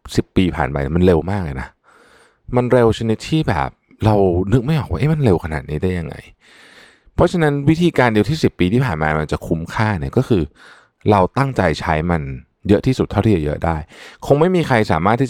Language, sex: Thai, male